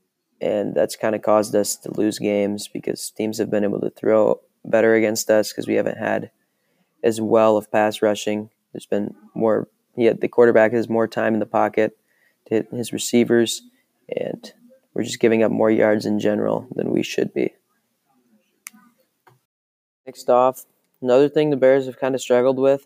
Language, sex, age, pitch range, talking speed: English, male, 20-39, 105-125 Hz, 180 wpm